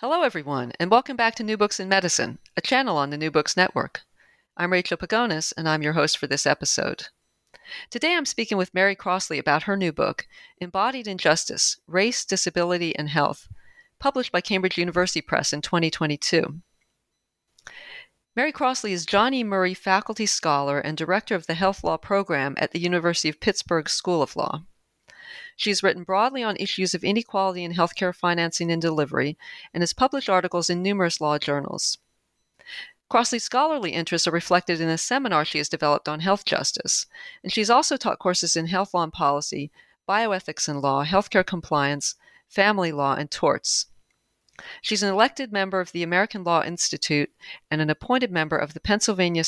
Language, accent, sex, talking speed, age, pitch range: English, American, female, 170 wpm, 40-59, 160-205 Hz